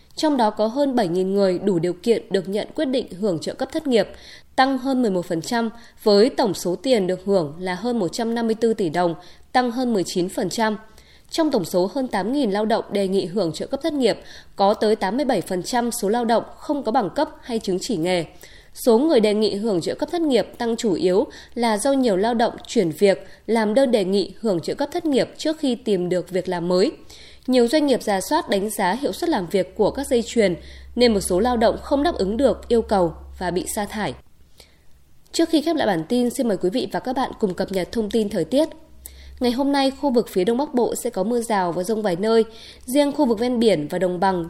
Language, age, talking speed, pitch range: Vietnamese, 20-39, 235 wpm, 195-255 Hz